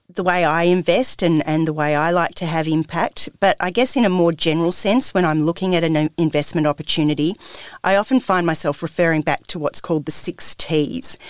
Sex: female